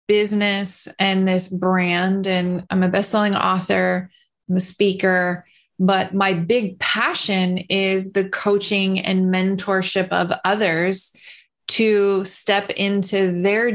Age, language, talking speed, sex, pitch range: 20-39, English, 120 wpm, female, 185-210 Hz